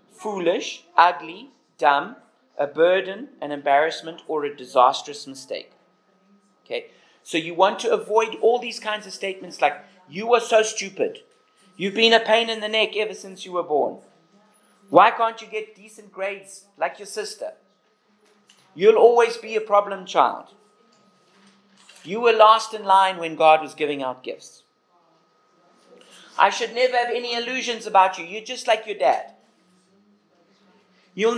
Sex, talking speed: male, 150 wpm